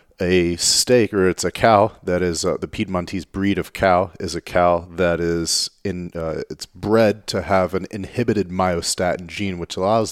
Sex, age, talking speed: male, 30-49, 185 wpm